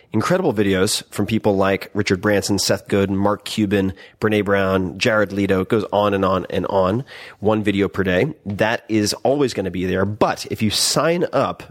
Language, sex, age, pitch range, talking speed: English, male, 30-49, 95-115 Hz, 195 wpm